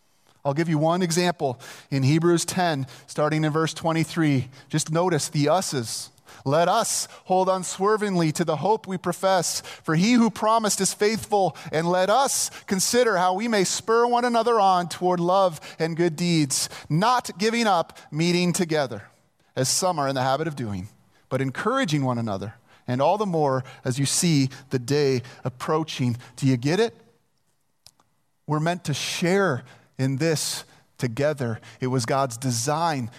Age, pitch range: 30-49, 140-190 Hz